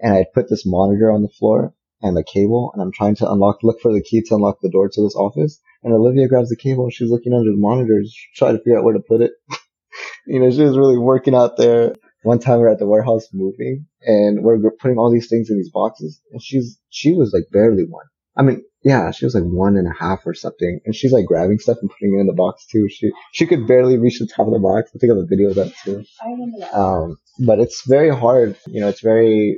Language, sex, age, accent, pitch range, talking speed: English, male, 20-39, American, 95-115 Hz, 260 wpm